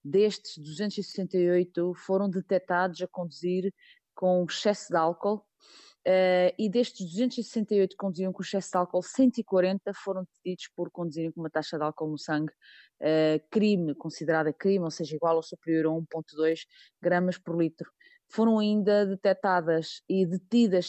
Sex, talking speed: female, 140 wpm